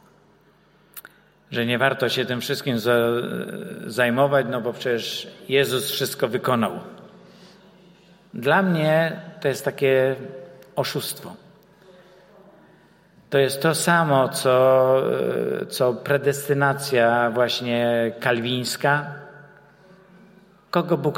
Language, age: Czech, 50-69